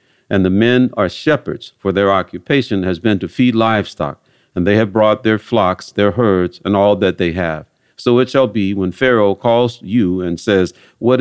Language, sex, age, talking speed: English, male, 50-69, 200 wpm